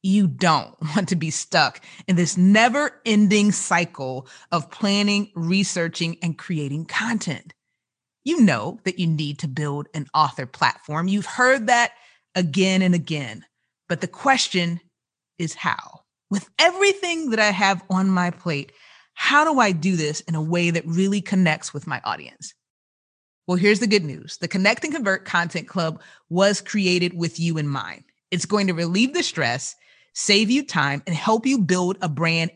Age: 30-49